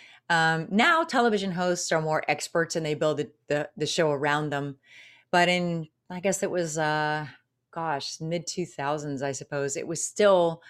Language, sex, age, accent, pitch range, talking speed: English, female, 30-49, American, 150-190 Hz, 175 wpm